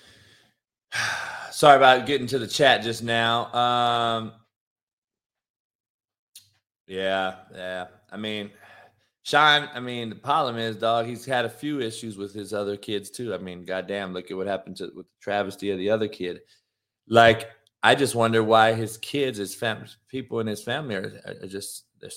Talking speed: 165 wpm